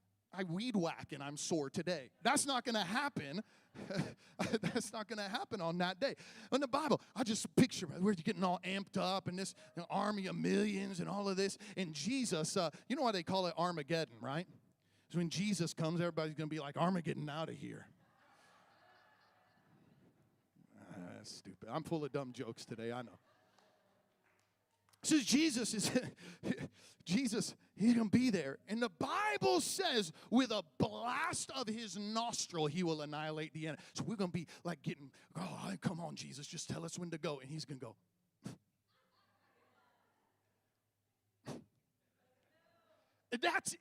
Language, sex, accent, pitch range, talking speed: English, male, American, 170-240 Hz, 165 wpm